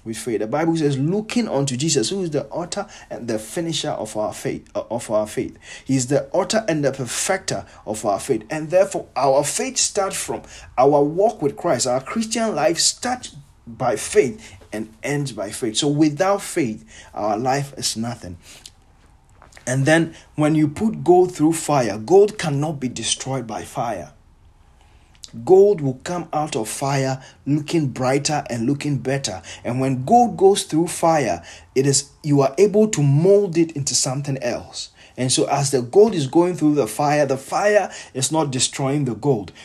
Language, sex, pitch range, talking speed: English, male, 125-165 Hz, 175 wpm